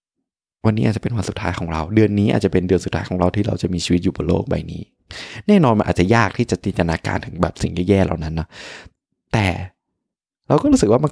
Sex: male